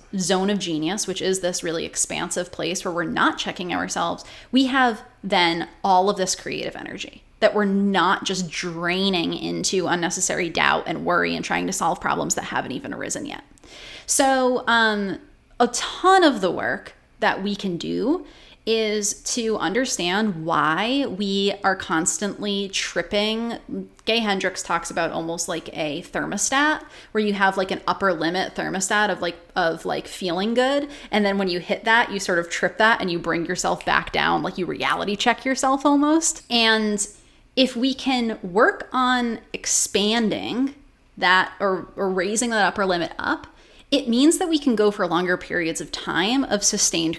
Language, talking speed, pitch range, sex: English, 170 wpm, 185-245 Hz, female